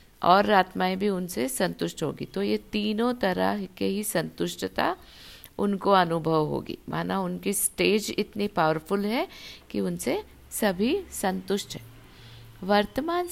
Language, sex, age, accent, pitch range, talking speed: Hindi, female, 60-79, native, 160-210 Hz, 125 wpm